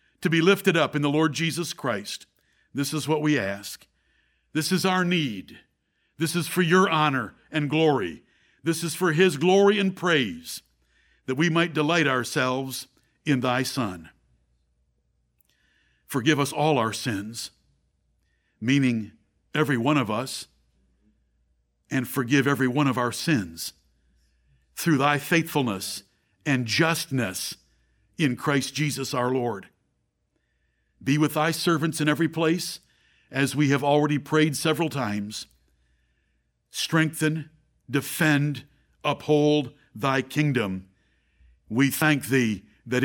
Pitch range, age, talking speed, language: 105-155 Hz, 60-79, 125 wpm, English